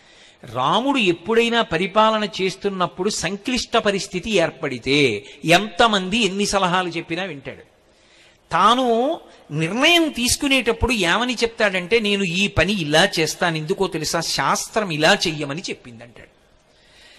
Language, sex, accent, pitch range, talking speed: Telugu, male, native, 185-255 Hz, 100 wpm